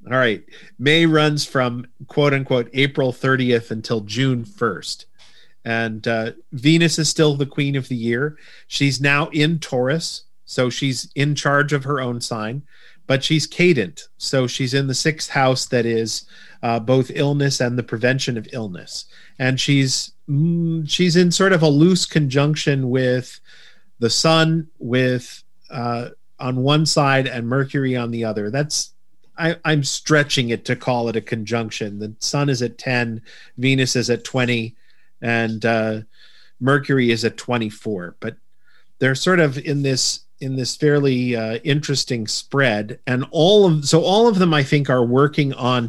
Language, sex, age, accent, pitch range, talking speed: English, male, 40-59, American, 120-145 Hz, 165 wpm